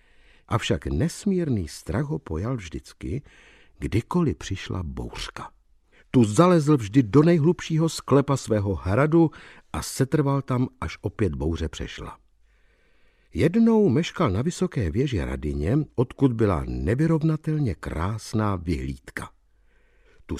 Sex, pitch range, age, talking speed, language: male, 100-145 Hz, 60-79, 105 wpm, Czech